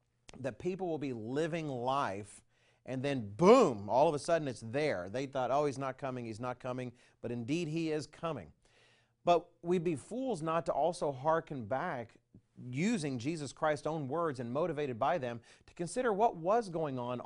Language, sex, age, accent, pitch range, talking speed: English, male, 40-59, American, 115-155 Hz, 185 wpm